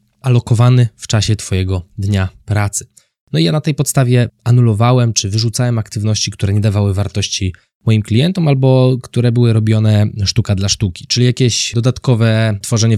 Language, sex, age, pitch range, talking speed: Polish, male, 20-39, 100-120 Hz, 155 wpm